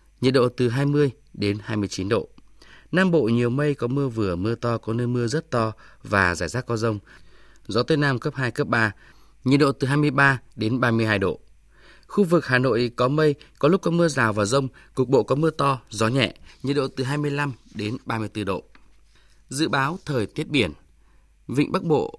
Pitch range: 105-140 Hz